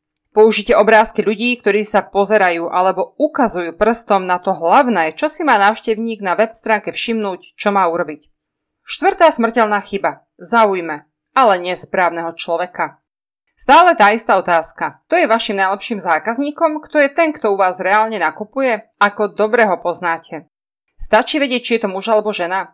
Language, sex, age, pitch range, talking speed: Slovak, female, 30-49, 180-240 Hz, 155 wpm